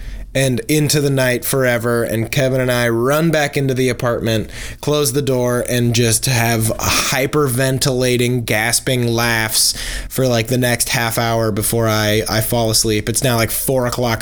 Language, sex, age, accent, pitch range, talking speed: English, male, 20-39, American, 115-140 Hz, 165 wpm